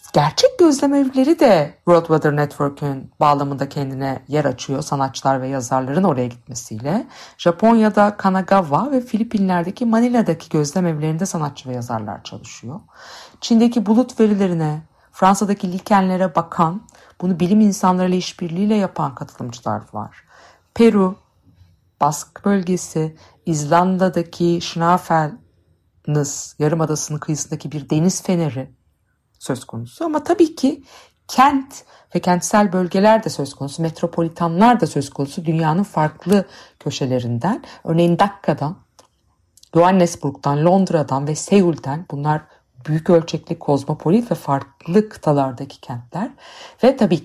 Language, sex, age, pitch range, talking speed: Turkish, female, 50-69, 140-195 Hz, 110 wpm